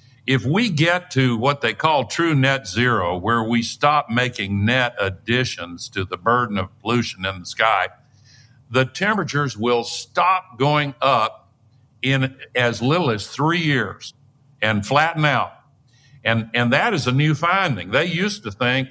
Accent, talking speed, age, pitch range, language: American, 160 wpm, 50-69, 115-145 Hz, English